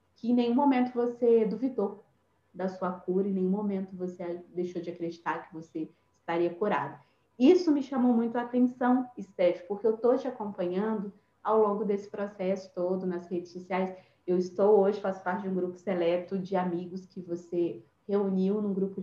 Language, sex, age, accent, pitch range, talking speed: Portuguese, female, 30-49, Brazilian, 185-230 Hz, 180 wpm